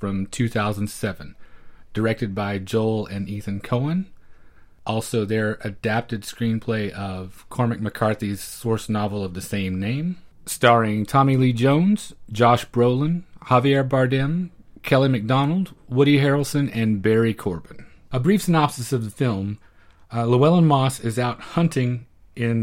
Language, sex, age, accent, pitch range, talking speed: English, male, 30-49, American, 105-130 Hz, 130 wpm